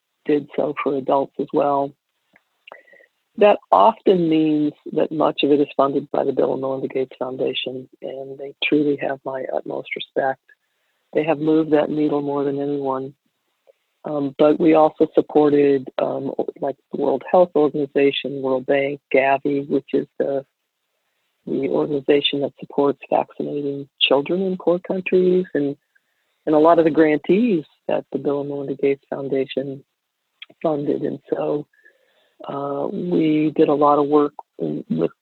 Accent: American